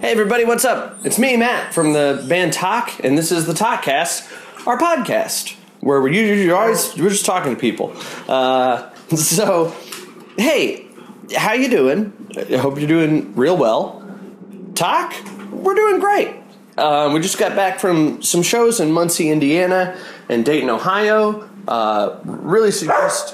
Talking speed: 145 wpm